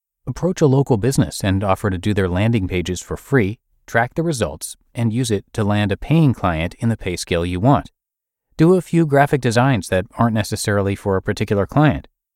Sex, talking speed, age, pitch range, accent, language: male, 205 wpm, 30-49, 90-130 Hz, American, English